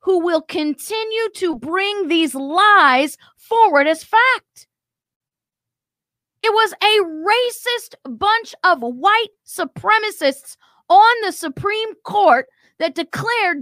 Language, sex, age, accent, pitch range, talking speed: English, female, 40-59, American, 280-410 Hz, 105 wpm